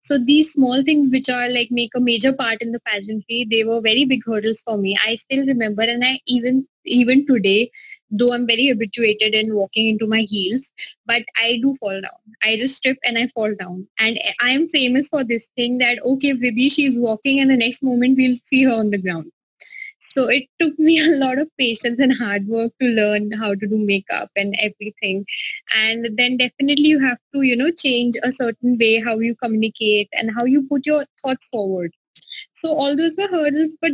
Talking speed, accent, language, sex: 210 wpm, Indian, English, female